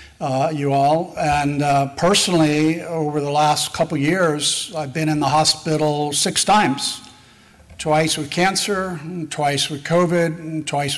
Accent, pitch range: American, 145-165 Hz